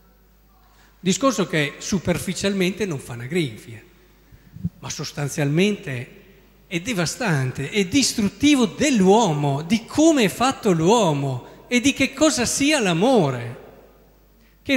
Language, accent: Italian, native